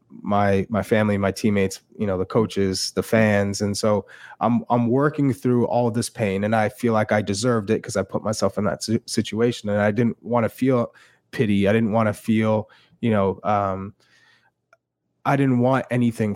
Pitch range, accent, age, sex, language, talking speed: 100-120 Hz, American, 20-39, male, English, 200 wpm